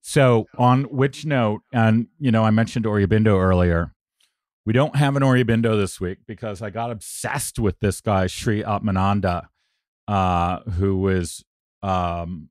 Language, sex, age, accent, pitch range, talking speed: English, male, 40-59, American, 90-115 Hz, 150 wpm